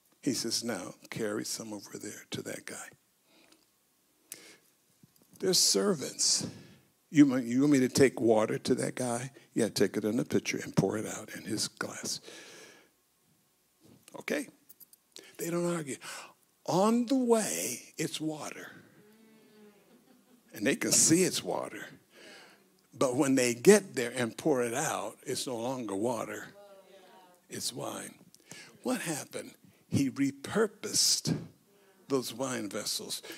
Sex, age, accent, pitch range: male, 60-79, American, 145-215 Hz